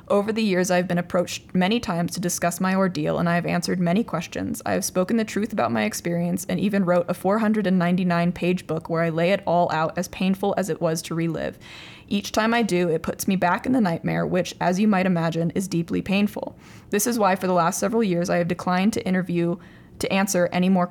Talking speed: 230 wpm